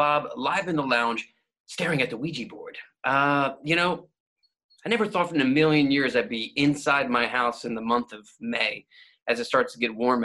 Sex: male